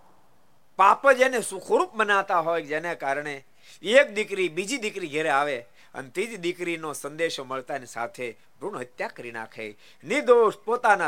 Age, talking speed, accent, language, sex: 50-69, 75 wpm, native, Gujarati, male